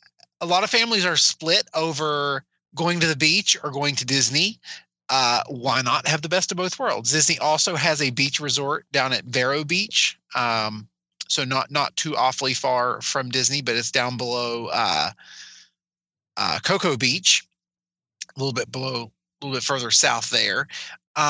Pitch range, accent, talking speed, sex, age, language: 130-165 Hz, American, 170 wpm, male, 30-49, English